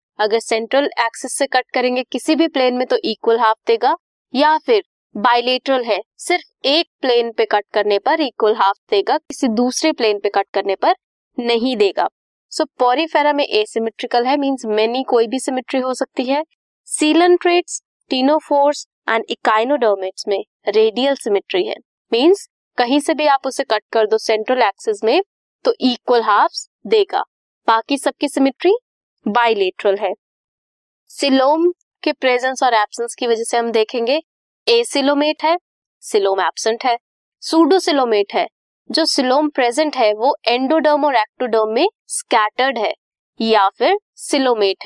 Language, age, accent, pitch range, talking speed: Hindi, 20-39, native, 225-320 Hz, 145 wpm